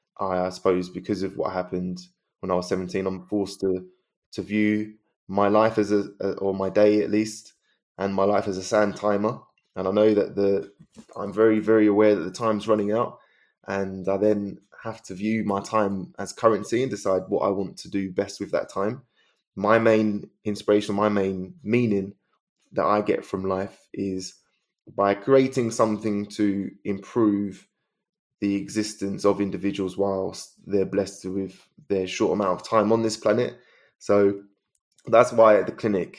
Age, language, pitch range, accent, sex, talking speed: 20-39, English, 95-105 Hz, British, male, 175 wpm